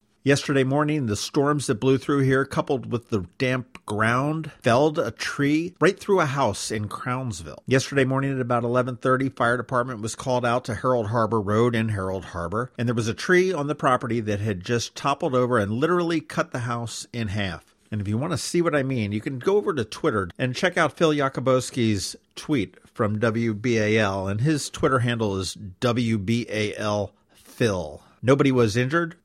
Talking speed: 185 wpm